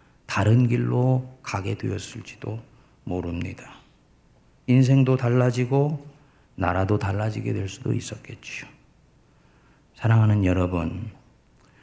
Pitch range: 105-140 Hz